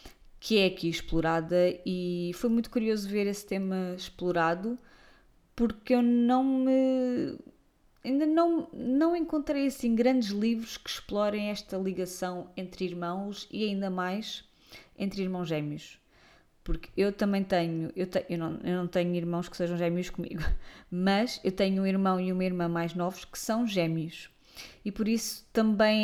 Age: 20-39